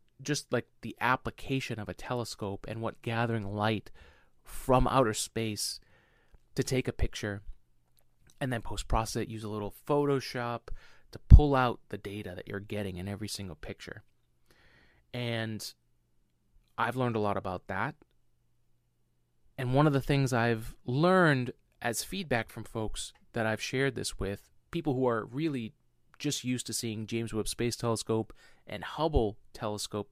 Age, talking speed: 30-49, 155 wpm